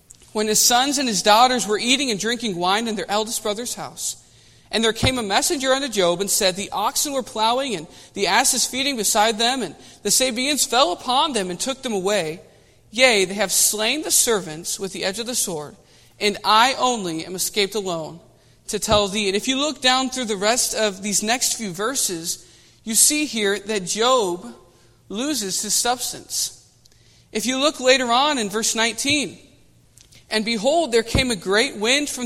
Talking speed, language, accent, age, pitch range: 190 wpm, English, American, 40-59, 190-255 Hz